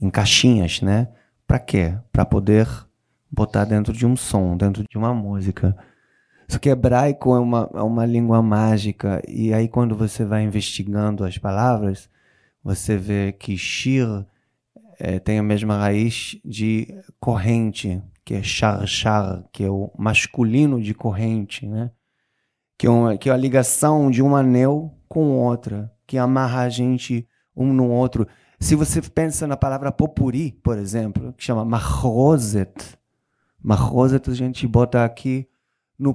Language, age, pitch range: Portuguese, 20-39, 105-135 Hz